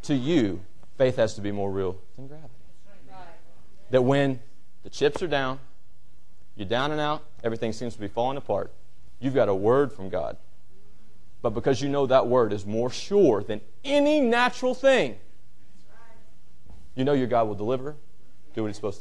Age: 30-49